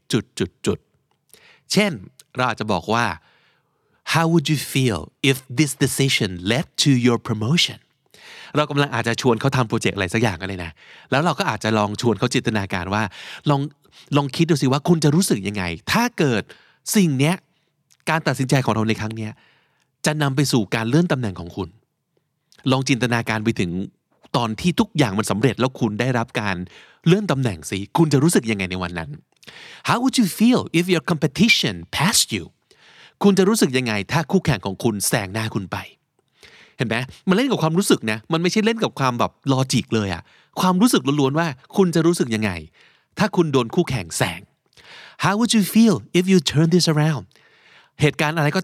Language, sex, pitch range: Thai, male, 115-165 Hz